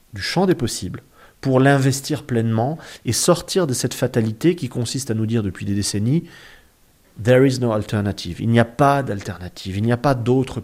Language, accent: French, French